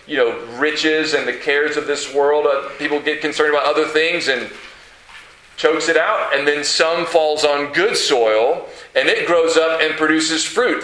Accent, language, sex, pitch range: American, English, male, 160-240 Hz